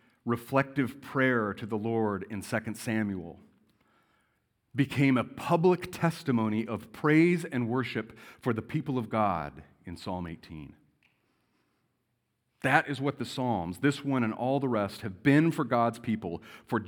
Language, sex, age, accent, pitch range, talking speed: English, male, 40-59, American, 115-160 Hz, 145 wpm